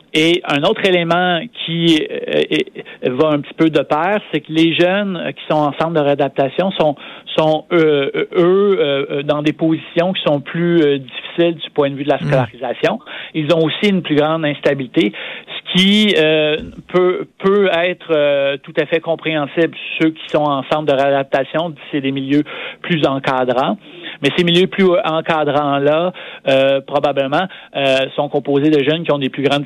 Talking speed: 180 wpm